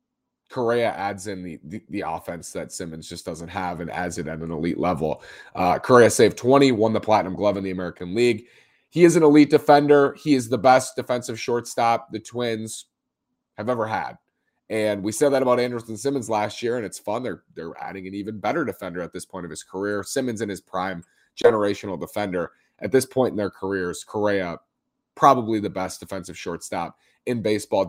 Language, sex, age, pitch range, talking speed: English, male, 30-49, 95-135 Hz, 200 wpm